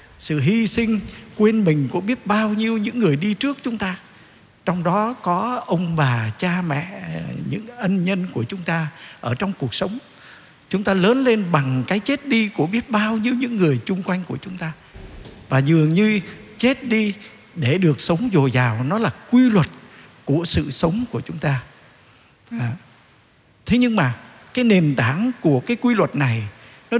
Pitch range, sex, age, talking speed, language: 150-230 Hz, male, 60-79, 185 wpm, Vietnamese